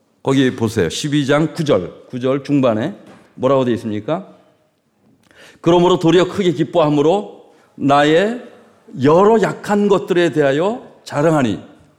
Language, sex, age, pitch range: Korean, male, 40-59, 130-180 Hz